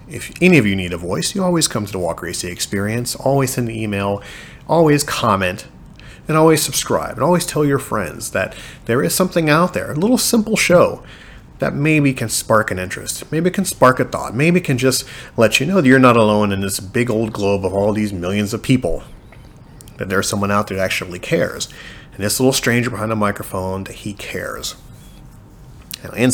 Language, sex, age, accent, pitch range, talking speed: English, male, 30-49, American, 95-130 Hz, 205 wpm